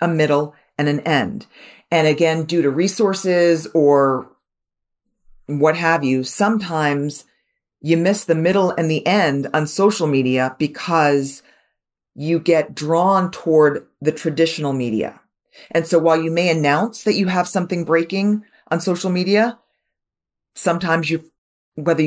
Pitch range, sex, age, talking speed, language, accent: 155-185 Hz, female, 40-59, 135 wpm, English, American